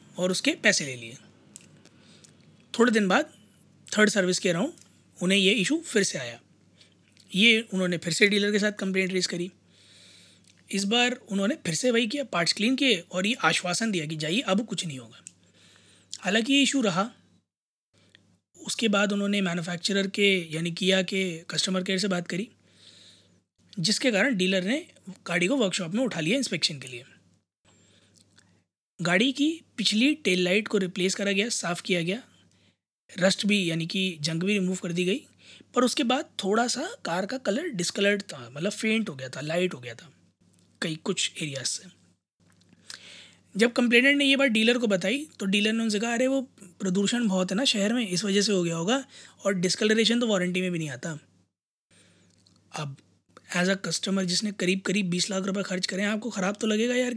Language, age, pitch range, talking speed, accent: Hindi, 20-39, 165-220 Hz, 185 wpm, native